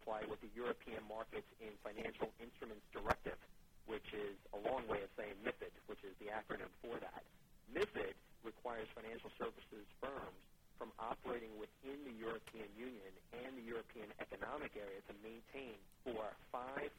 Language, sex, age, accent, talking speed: English, male, 40-59, American, 140 wpm